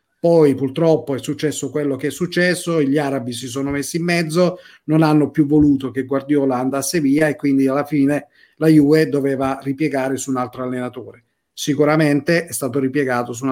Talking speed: 180 wpm